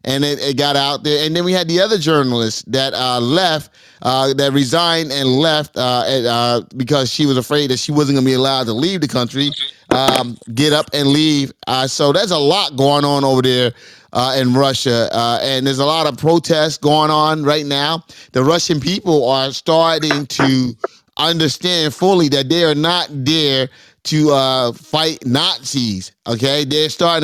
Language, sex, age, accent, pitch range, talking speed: English, male, 30-49, American, 130-160 Hz, 190 wpm